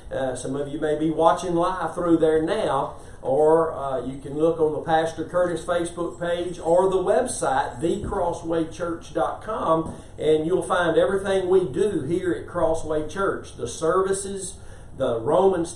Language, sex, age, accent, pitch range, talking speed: English, male, 50-69, American, 140-170 Hz, 150 wpm